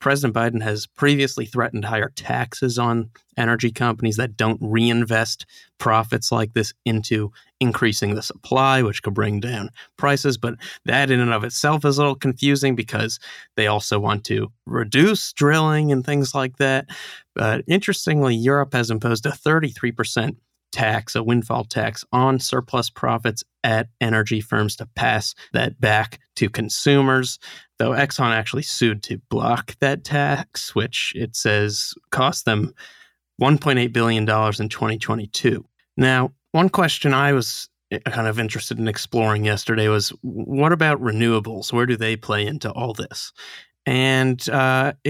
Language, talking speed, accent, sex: English, 150 wpm, American, male